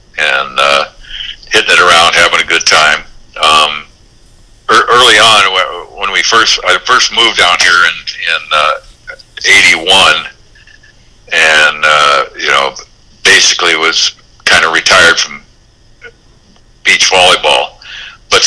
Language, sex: English, male